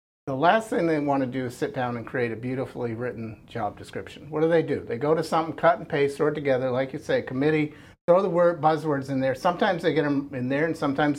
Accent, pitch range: American, 120-150 Hz